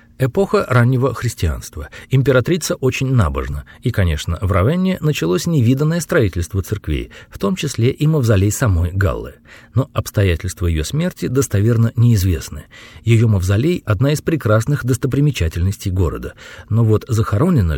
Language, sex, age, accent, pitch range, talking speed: Russian, male, 40-59, native, 90-130 Hz, 125 wpm